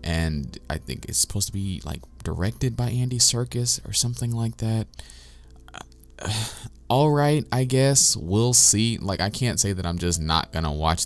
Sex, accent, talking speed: male, American, 180 wpm